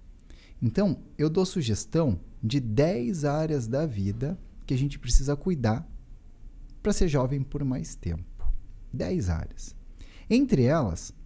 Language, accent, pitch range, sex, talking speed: Portuguese, Brazilian, 105-160 Hz, male, 130 wpm